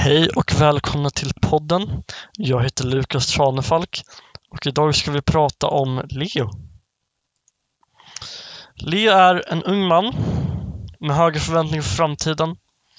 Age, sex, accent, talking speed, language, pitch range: 20-39, male, Swedish, 120 wpm, English, 140-180 Hz